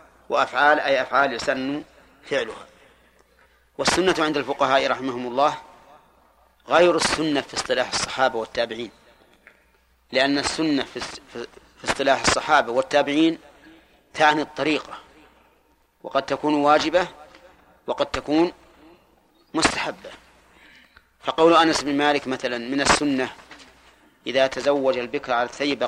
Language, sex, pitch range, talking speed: Arabic, male, 130-155 Hz, 95 wpm